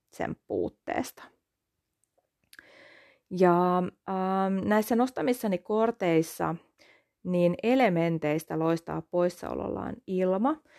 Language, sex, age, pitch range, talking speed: Finnish, female, 30-49, 170-210 Hz, 65 wpm